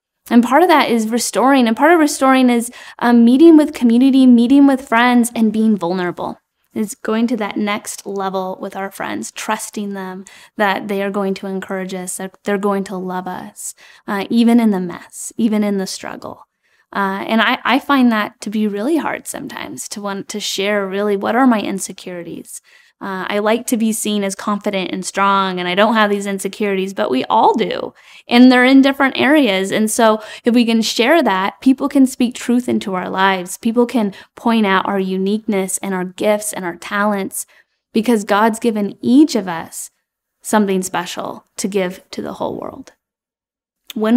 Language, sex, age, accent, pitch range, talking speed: English, female, 10-29, American, 195-245 Hz, 190 wpm